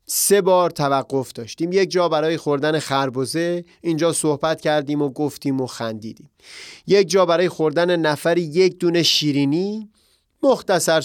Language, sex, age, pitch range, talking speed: Persian, male, 30-49, 145-185 Hz, 135 wpm